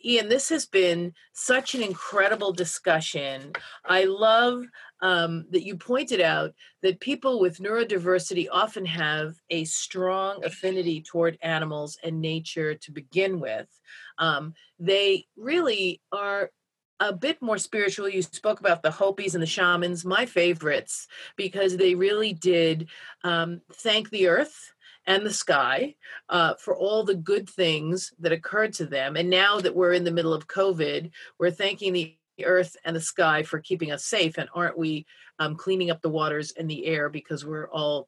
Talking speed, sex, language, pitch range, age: 165 wpm, female, English, 160-195 Hz, 40-59